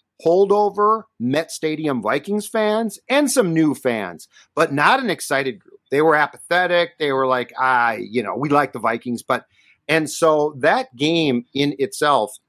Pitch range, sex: 130-175 Hz, male